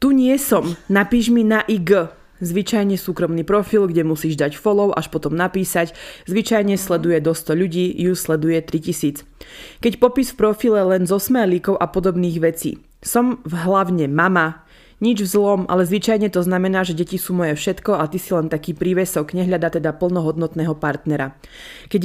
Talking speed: 165 wpm